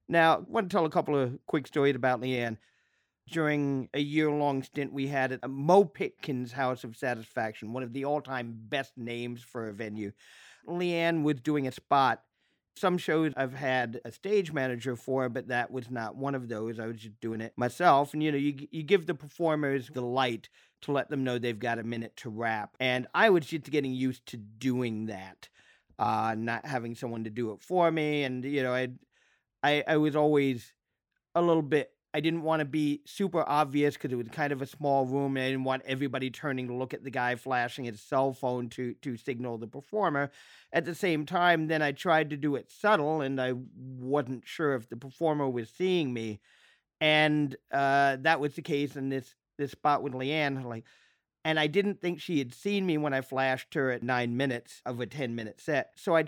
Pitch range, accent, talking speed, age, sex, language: 125-150 Hz, American, 210 wpm, 50-69, male, English